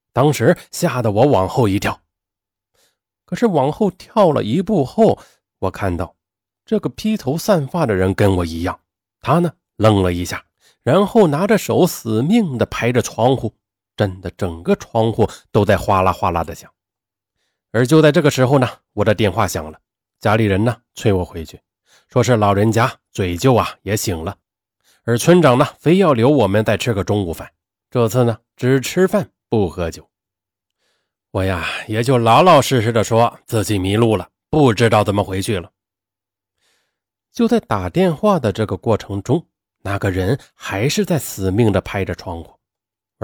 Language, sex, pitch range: Chinese, male, 95-130 Hz